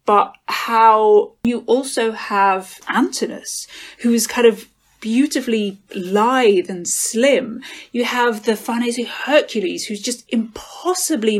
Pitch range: 195-235 Hz